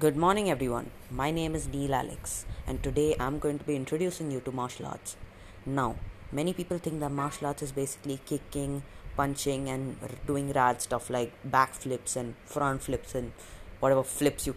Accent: Indian